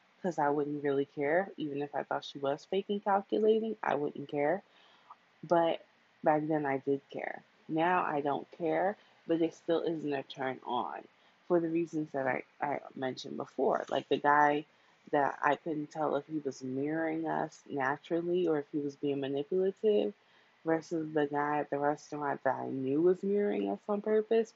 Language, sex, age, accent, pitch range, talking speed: English, female, 20-39, American, 145-185 Hz, 180 wpm